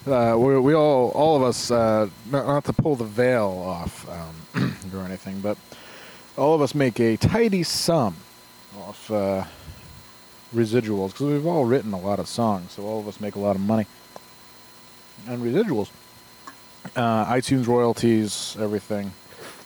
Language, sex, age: English, male, 20-39